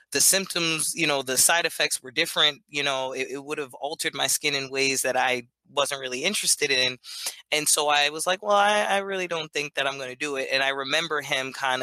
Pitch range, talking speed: 135-170 Hz, 245 wpm